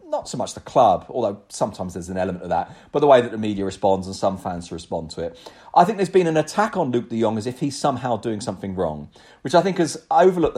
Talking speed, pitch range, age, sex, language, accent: 265 wpm, 105-160 Hz, 40-59, male, English, British